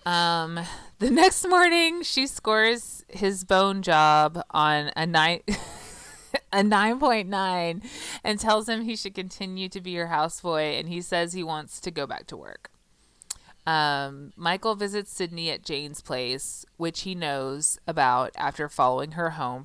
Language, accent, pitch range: English, American, 150-195 Hz